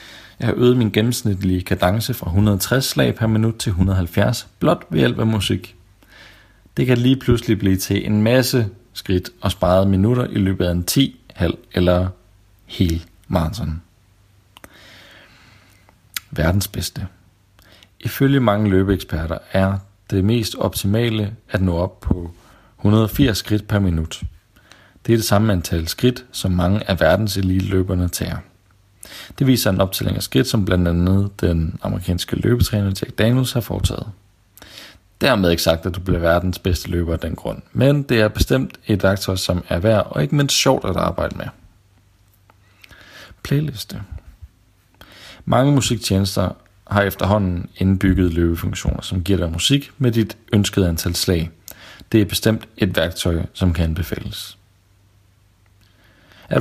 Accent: native